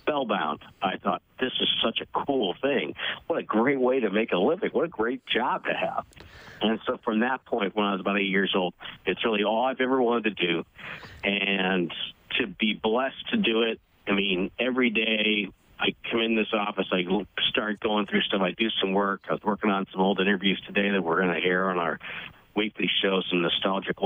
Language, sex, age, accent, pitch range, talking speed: English, male, 50-69, American, 95-115 Hz, 215 wpm